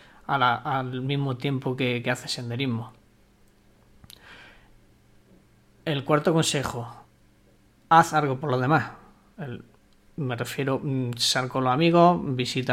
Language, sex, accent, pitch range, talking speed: Spanish, male, Spanish, 125-145 Hz, 120 wpm